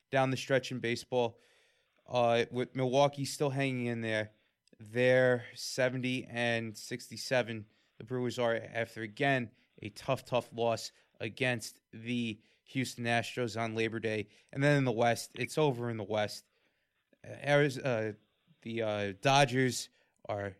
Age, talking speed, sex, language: 20-39, 140 wpm, male, English